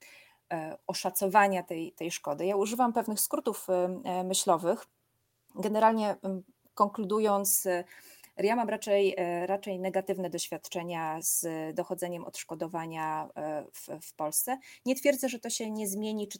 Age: 30-49